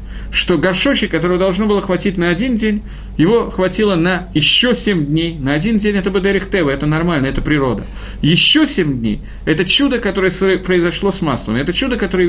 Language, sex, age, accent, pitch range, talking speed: Russian, male, 50-69, native, 135-205 Hz, 175 wpm